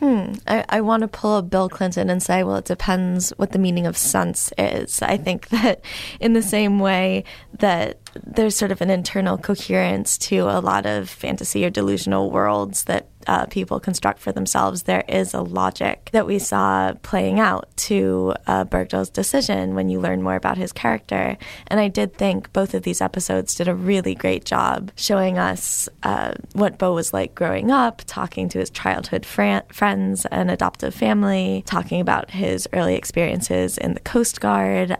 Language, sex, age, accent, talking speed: English, female, 20-39, American, 185 wpm